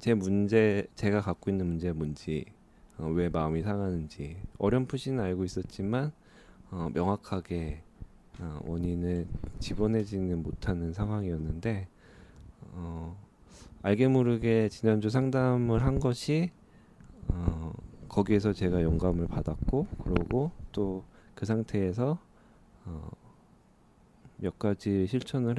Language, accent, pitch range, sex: Korean, native, 85-110 Hz, male